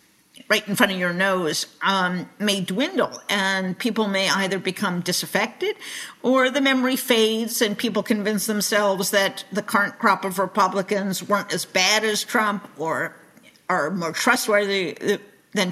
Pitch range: 185-220 Hz